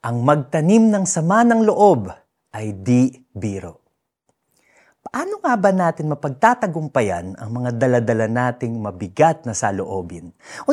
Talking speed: 130 wpm